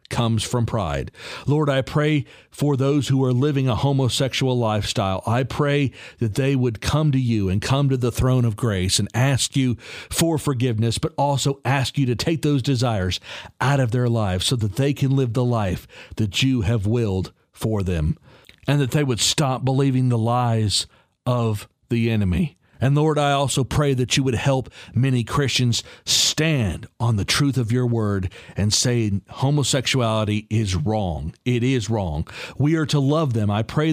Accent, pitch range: American, 110-140 Hz